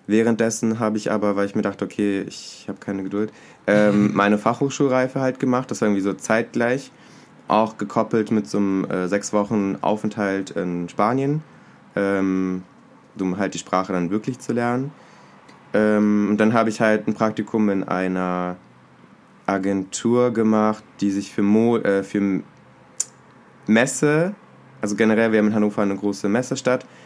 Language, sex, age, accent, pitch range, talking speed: German, male, 20-39, German, 100-115 Hz, 145 wpm